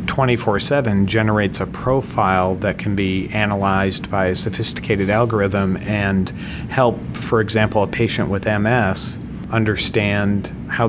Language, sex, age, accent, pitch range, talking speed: English, male, 40-59, American, 100-115 Hz, 115 wpm